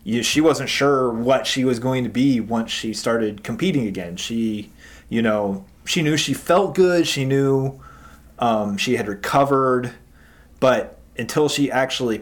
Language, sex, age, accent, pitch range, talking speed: English, male, 20-39, American, 105-135 Hz, 155 wpm